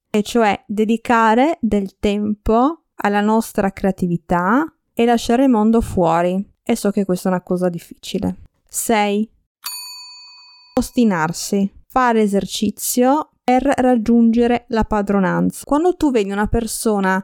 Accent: native